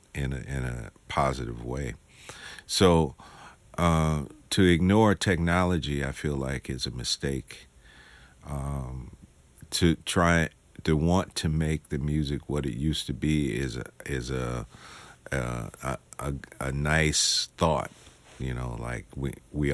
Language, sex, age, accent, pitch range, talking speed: English, male, 50-69, American, 65-80 Hz, 135 wpm